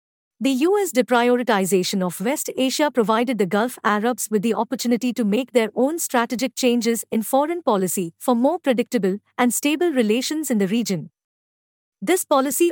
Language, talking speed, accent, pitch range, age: English, 155 wpm, Indian, 210-265 Hz, 50-69